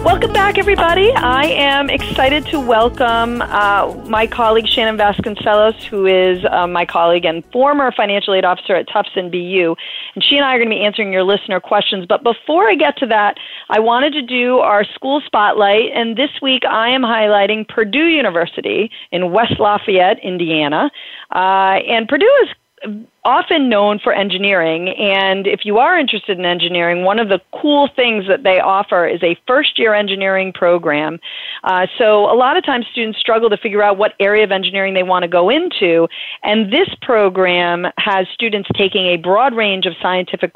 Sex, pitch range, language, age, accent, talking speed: female, 185-235 Hz, English, 40-59, American, 185 wpm